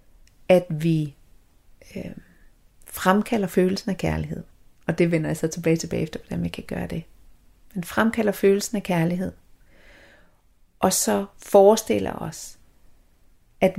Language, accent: Danish, native